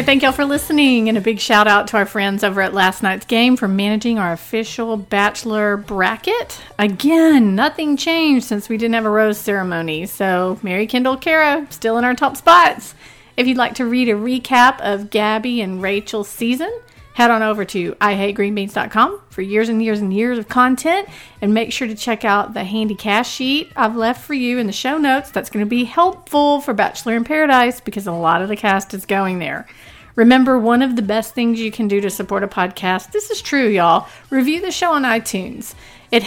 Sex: female